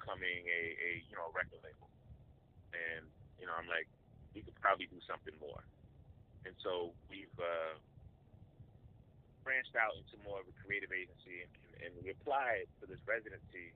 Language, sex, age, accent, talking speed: English, male, 30-49, American, 165 wpm